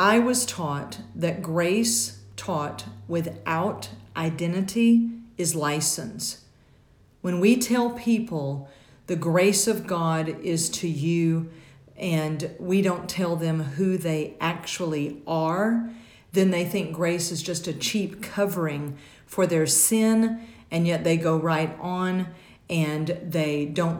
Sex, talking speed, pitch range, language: female, 130 wpm, 160-195 Hz, English